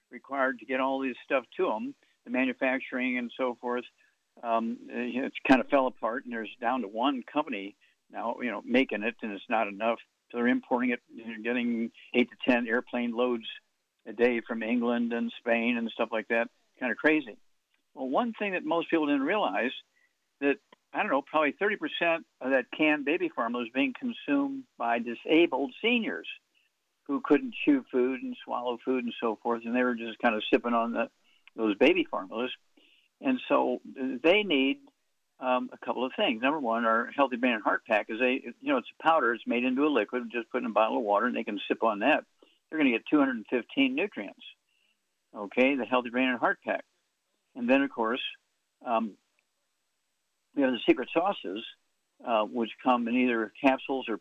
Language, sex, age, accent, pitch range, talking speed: English, male, 60-79, American, 120-170 Hz, 200 wpm